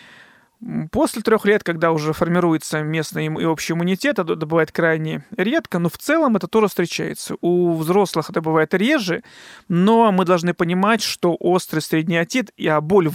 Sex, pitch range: male, 160-210 Hz